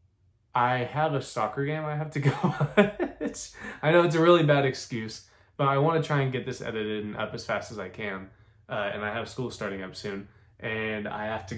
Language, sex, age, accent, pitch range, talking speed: English, male, 20-39, American, 110-150 Hz, 225 wpm